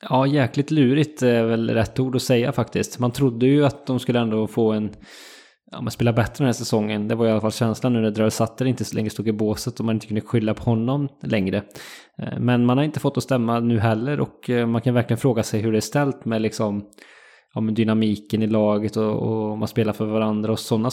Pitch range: 110-125 Hz